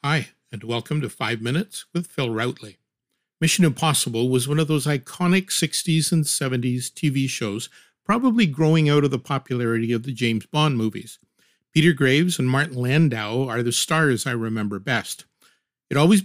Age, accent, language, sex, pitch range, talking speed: 50-69, American, English, male, 125-165 Hz, 165 wpm